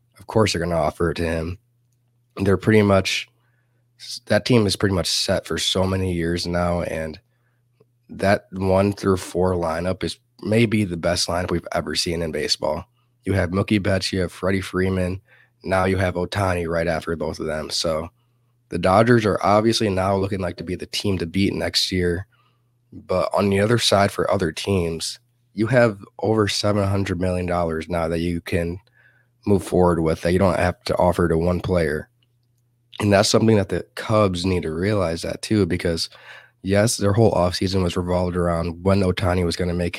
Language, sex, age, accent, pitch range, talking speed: English, male, 20-39, American, 90-110 Hz, 190 wpm